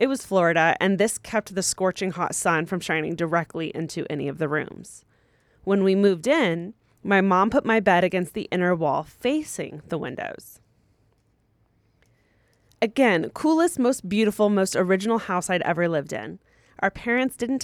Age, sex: 20-39, female